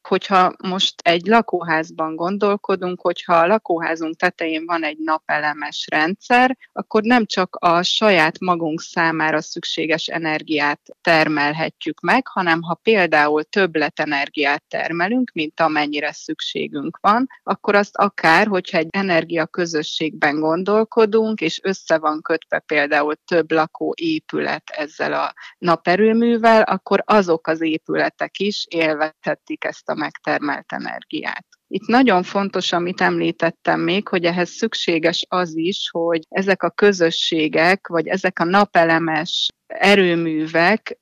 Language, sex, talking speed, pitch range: Hungarian, female, 120 wpm, 160-195 Hz